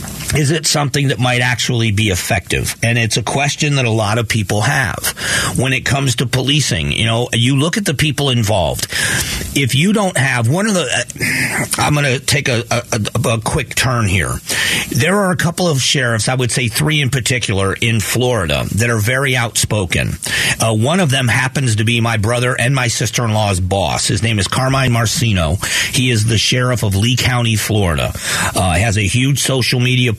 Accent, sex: American, male